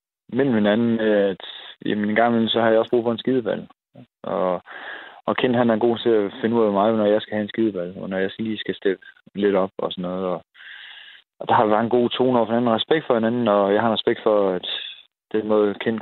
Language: Danish